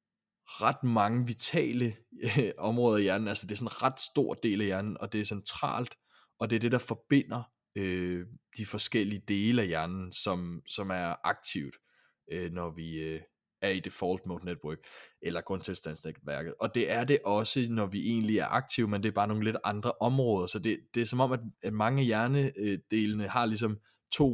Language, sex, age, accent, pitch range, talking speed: Danish, male, 20-39, native, 95-120 Hz, 195 wpm